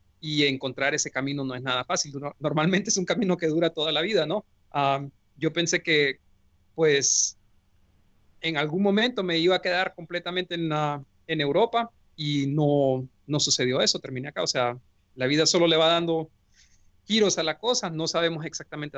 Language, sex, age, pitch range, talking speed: English, male, 40-59, 130-170 Hz, 180 wpm